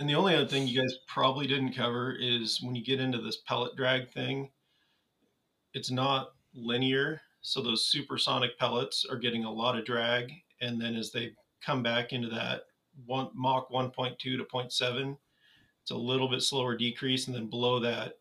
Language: English